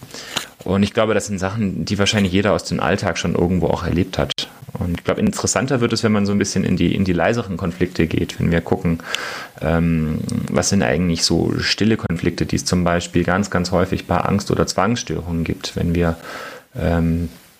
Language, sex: German, male